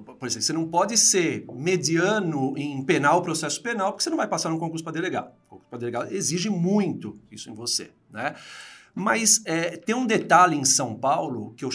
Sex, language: male, Portuguese